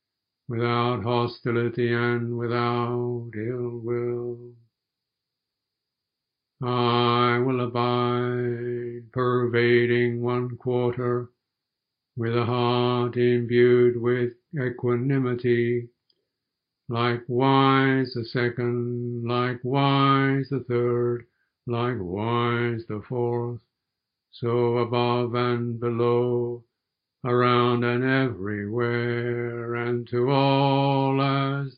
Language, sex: English, male